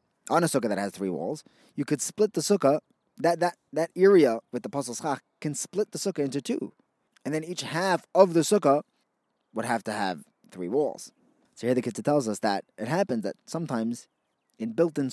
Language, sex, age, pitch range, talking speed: English, male, 20-39, 130-180 Hz, 205 wpm